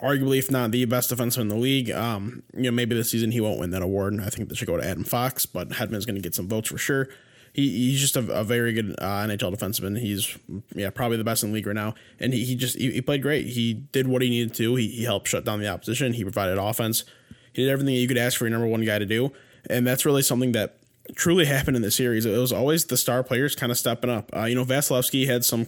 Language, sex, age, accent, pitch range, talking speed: English, male, 20-39, American, 110-125 Hz, 285 wpm